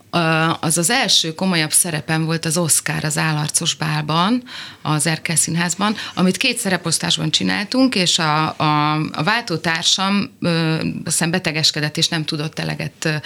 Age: 30-49